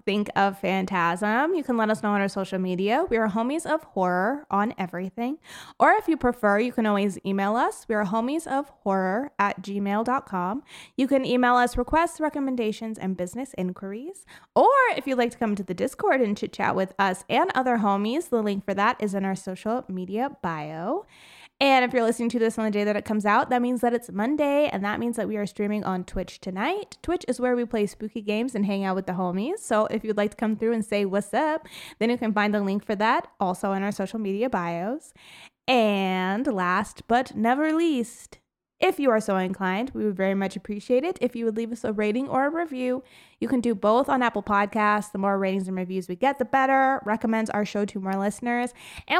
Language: English